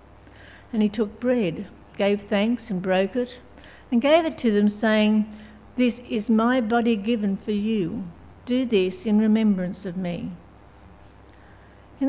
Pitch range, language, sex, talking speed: 185-230 Hz, English, female, 145 wpm